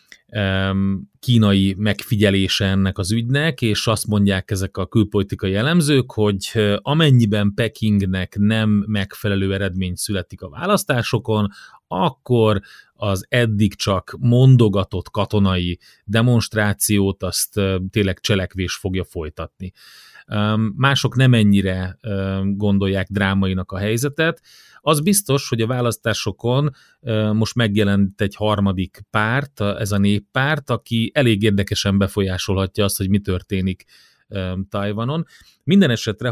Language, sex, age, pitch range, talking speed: Hungarian, male, 30-49, 100-115 Hz, 105 wpm